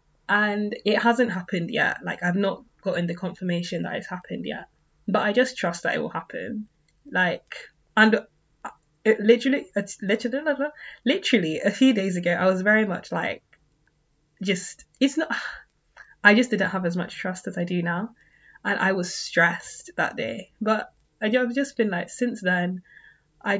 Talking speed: 170 wpm